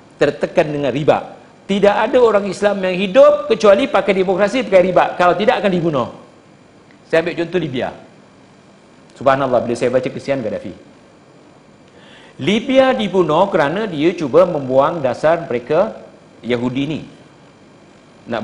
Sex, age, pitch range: male, 50-69, 155-215 Hz